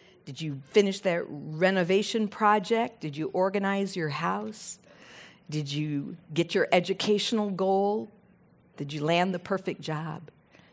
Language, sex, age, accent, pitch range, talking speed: English, female, 50-69, American, 175-210 Hz, 130 wpm